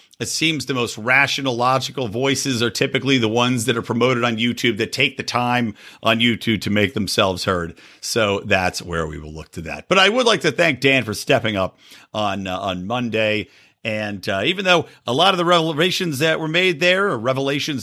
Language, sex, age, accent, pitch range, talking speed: English, male, 50-69, American, 100-145 Hz, 210 wpm